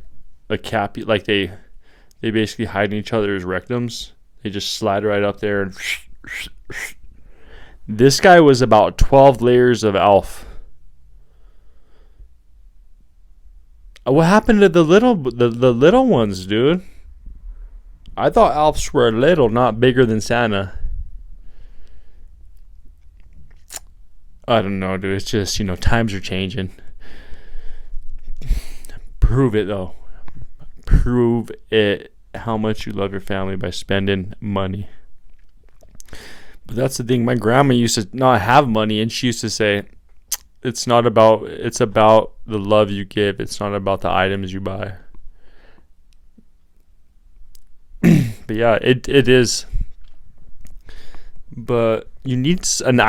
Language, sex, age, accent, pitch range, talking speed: English, male, 20-39, American, 75-120 Hz, 125 wpm